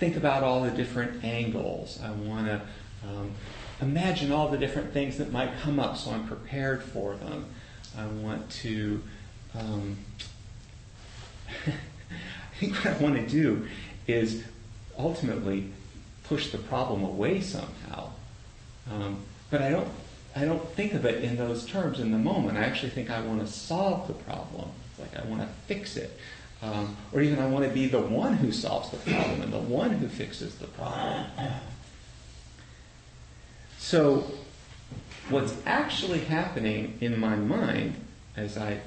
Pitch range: 105-140 Hz